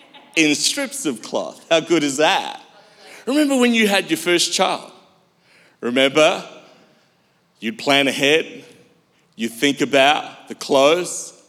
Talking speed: 125 wpm